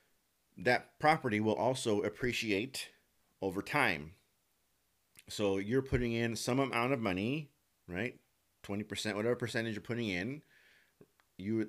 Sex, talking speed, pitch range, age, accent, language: male, 120 wpm, 95-125 Hz, 40-59, American, English